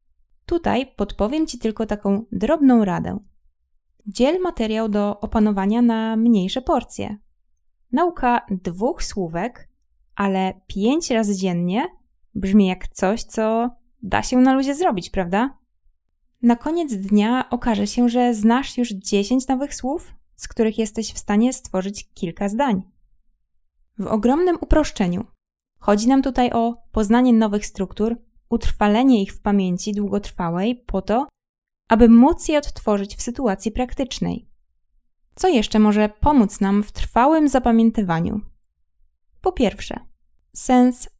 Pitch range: 195-245 Hz